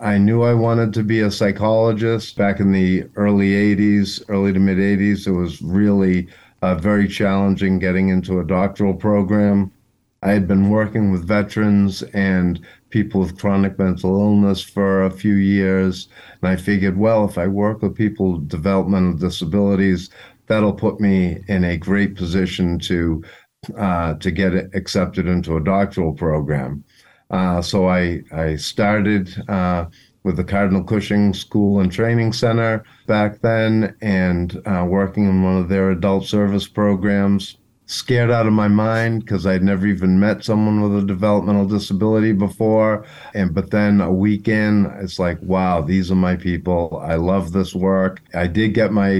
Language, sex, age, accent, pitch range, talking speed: English, male, 50-69, American, 95-105 Hz, 165 wpm